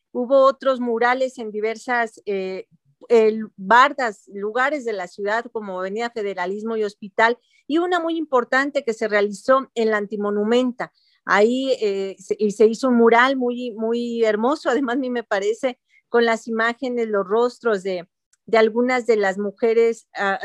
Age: 40-59